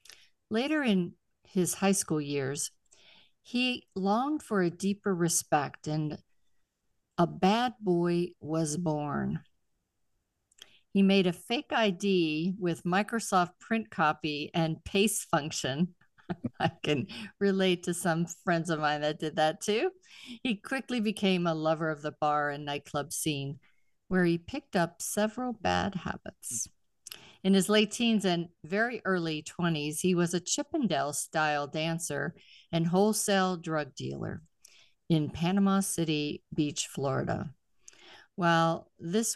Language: English